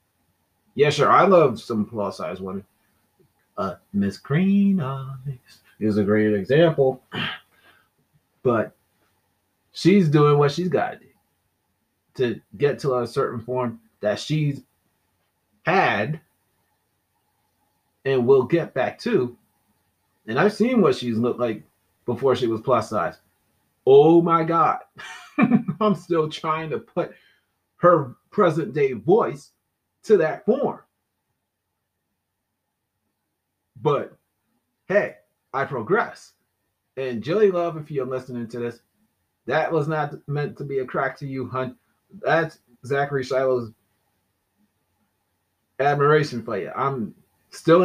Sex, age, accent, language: male, 30-49, American, English